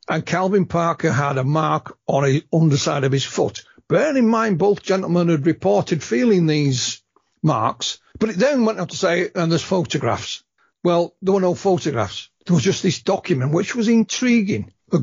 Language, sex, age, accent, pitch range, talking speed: English, male, 60-79, British, 145-195 Hz, 185 wpm